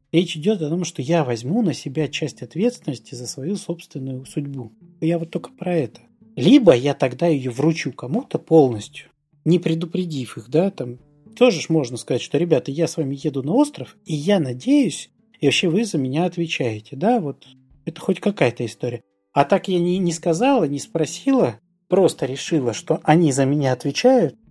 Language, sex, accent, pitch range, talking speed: Russian, male, native, 130-175 Hz, 180 wpm